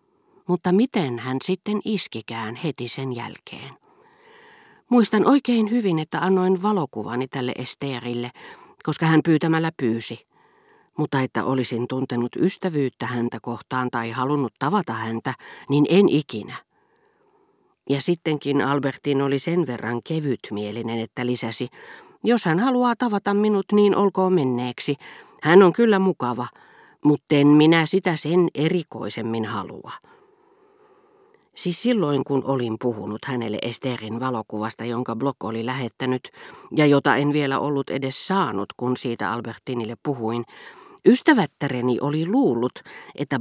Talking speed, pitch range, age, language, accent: 125 wpm, 120-190 Hz, 40-59, Finnish, native